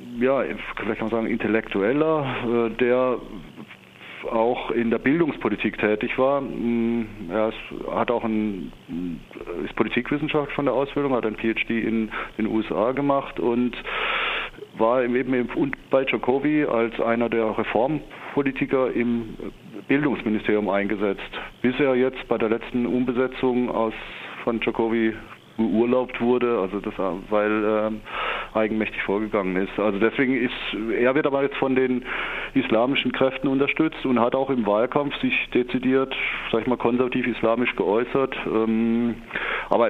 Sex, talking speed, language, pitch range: male, 130 wpm, German, 105-125 Hz